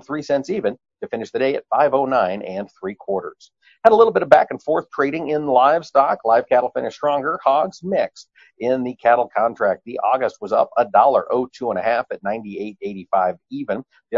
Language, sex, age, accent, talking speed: English, male, 50-69, American, 205 wpm